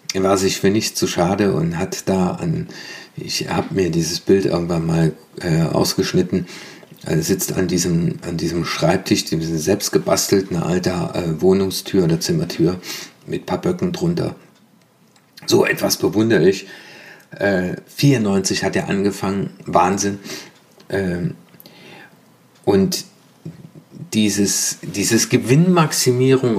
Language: German